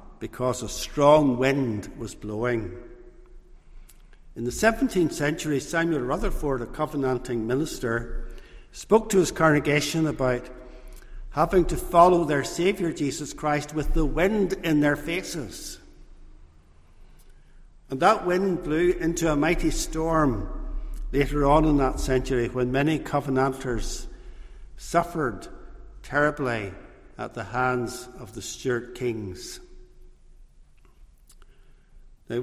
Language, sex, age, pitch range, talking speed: English, male, 60-79, 125-165 Hz, 110 wpm